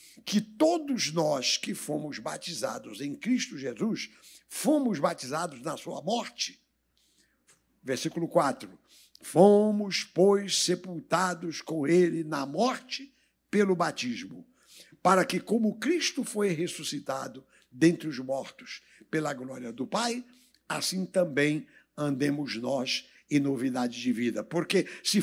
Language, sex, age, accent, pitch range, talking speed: Portuguese, male, 60-79, Brazilian, 155-215 Hz, 115 wpm